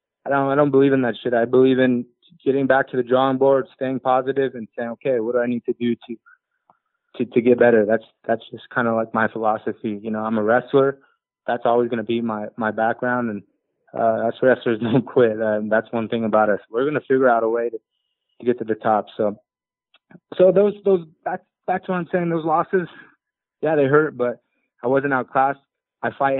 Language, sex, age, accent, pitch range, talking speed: English, male, 20-39, American, 115-135 Hz, 230 wpm